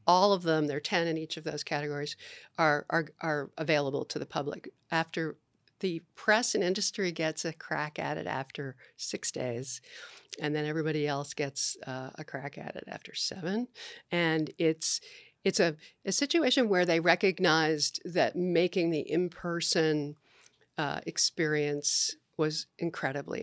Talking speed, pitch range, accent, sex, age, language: 155 wpm, 150-185 Hz, American, female, 50-69, English